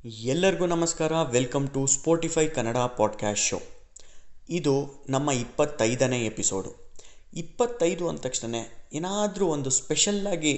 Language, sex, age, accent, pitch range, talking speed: Kannada, male, 20-39, native, 120-165 Hz, 100 wpm